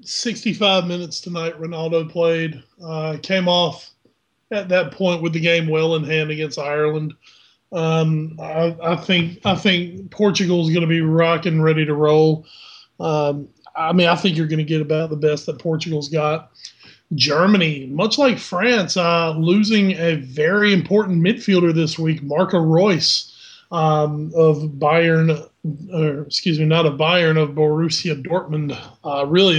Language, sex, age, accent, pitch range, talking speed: English, male, 30-49, American, 155-185 Hz, 155 wpm